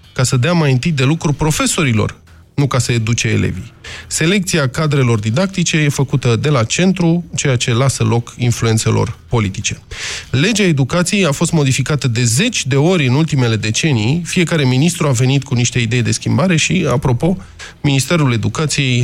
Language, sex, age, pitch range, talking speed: Romanian, male, 20-39, 115-160 Hz, 165 wpm